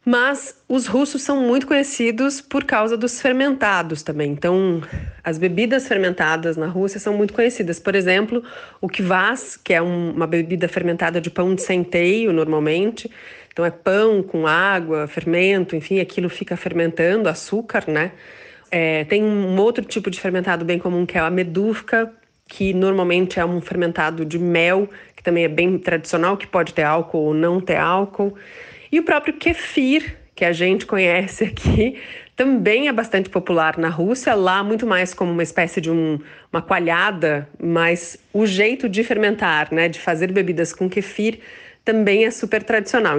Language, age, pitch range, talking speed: Portuguese, 30-49, 170-215 Hz, 165 wpm